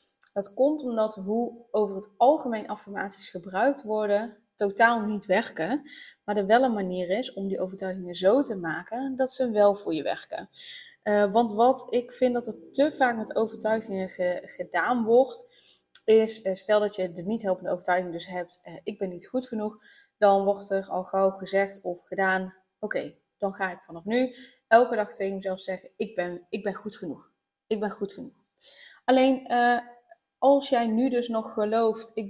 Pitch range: 195-245 Hz